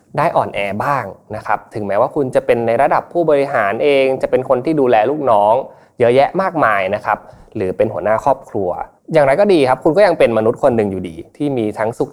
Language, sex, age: Thai, male, 20-39